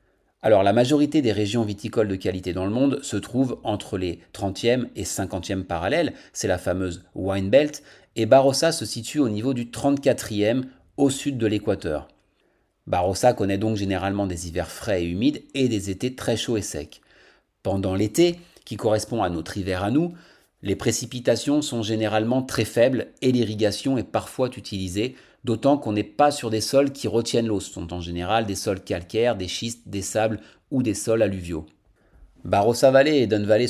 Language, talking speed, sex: French, 180 wpm, male